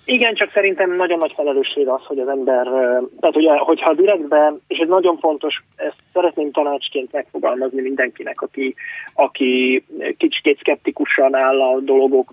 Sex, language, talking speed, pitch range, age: male, Hungarian, 150 wpm, 130-210 Hz, 20-39